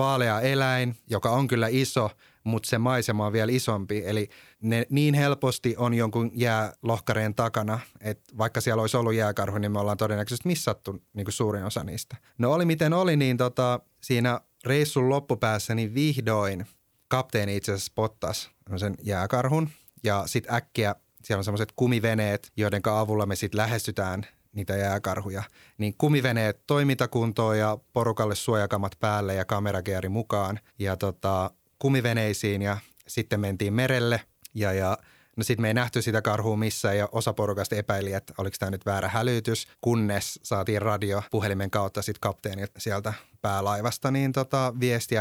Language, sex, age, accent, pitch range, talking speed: Finnish, male, 30-49, native, 100-120 Hz, 150 wpm